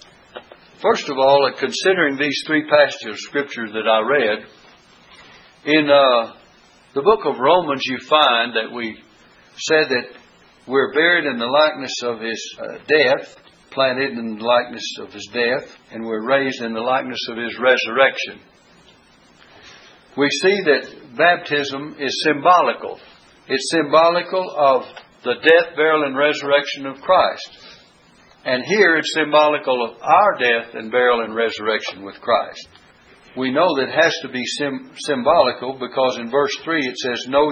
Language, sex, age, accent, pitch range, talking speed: English, male, 60-79, American, 120-145 Hz, 150 wpm